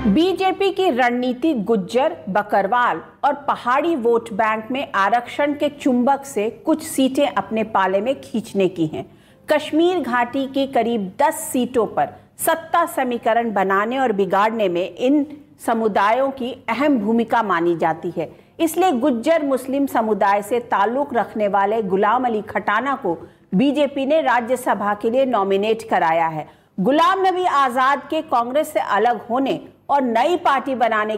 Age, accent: 50-69, Indian